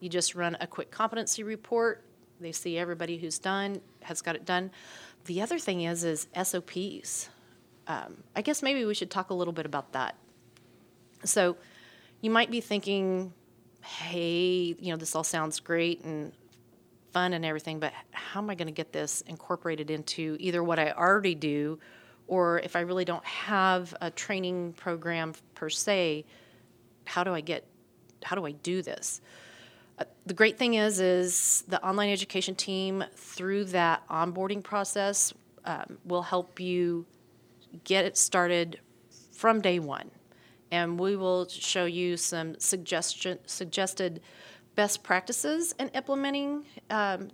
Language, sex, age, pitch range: English, female, 30-49, 170-195 Hz